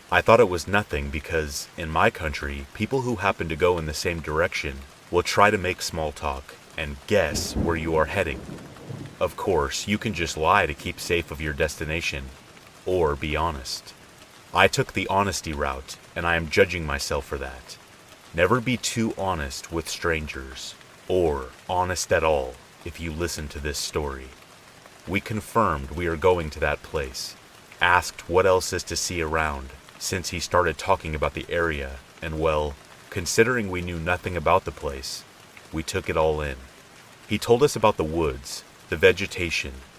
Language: English